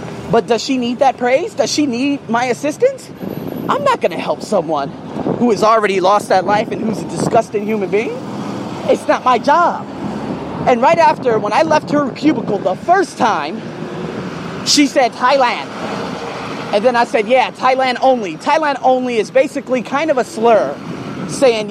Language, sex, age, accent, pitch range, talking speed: English, male, 30-49, American, 205-265 Hz, 175 wpm